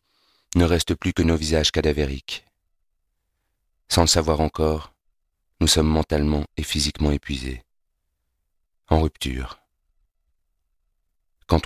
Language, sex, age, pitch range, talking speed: French, male, 30-49, 75-80 Hz, 105 wpm